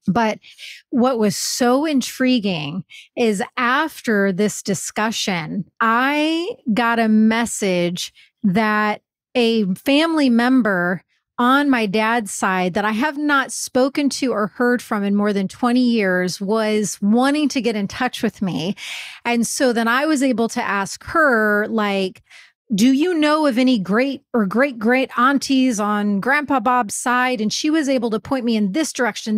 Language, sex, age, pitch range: English, female, 30-49, 215-265 Hz